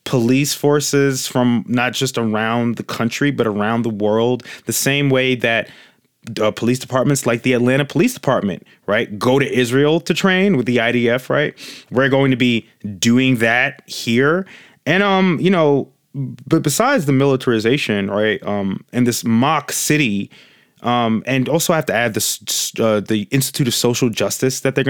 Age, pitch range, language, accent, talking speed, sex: 20-39, 115-145 Hz, English, American, 170 wpm, male